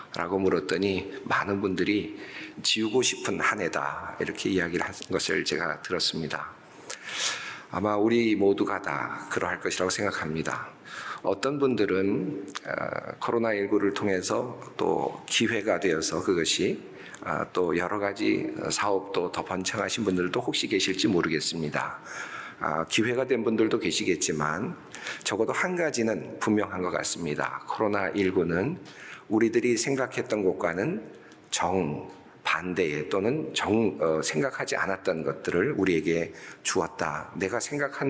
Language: Korean